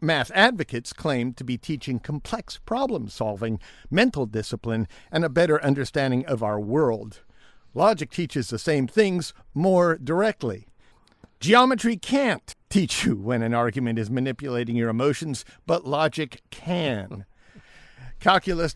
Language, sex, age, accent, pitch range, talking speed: English, male, 50-69, American, 125-165 Hz, 125 wpm